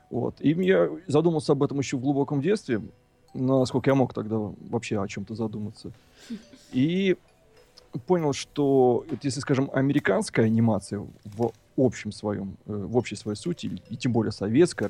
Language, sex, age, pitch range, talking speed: Russian, male, 30-49, 110-135 Hz, 135 wpm